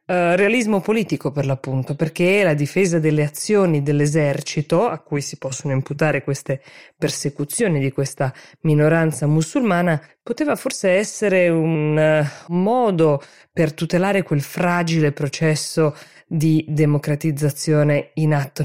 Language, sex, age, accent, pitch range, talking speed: Italian, female, 20-39, native, 145-170 Hz, 115 wpm